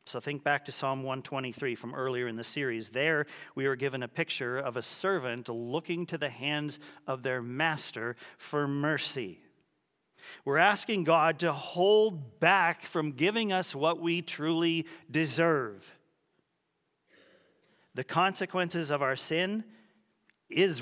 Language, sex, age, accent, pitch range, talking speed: English, male, 50-69, American, 130-170 Hz, 140 wpm